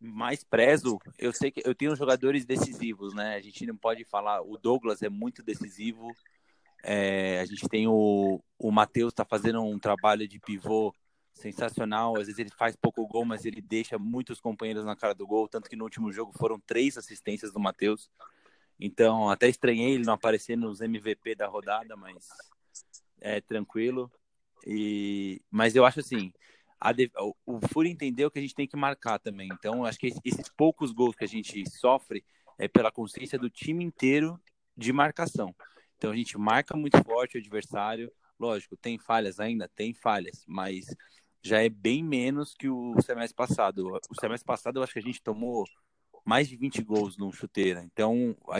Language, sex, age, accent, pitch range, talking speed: Portuguese, male, 20-39, Brazilian, 105-130 Hz, 180 wpm